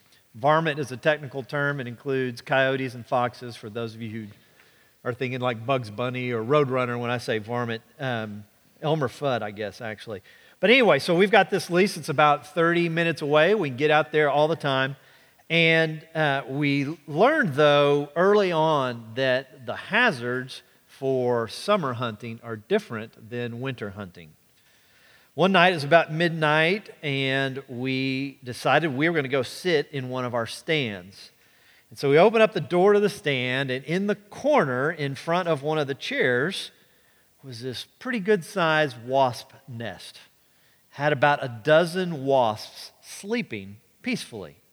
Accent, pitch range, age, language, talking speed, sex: American, 125-165 Hz, 40-59, English, 170 wpm, male